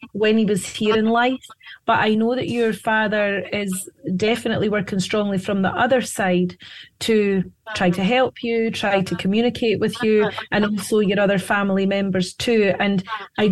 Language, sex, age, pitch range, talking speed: English, female, 30-49, 190-215 Hz, 175 wpm